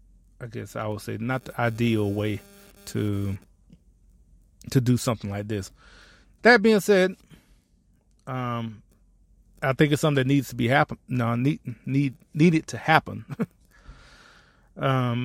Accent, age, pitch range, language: American, 30-49, 110-145 Hz, English